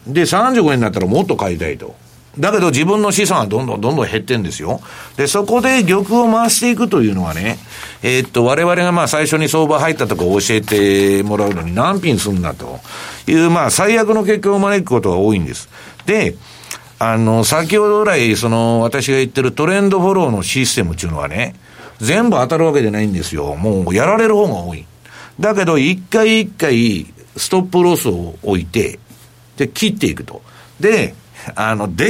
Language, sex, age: Japanese, male, 60-79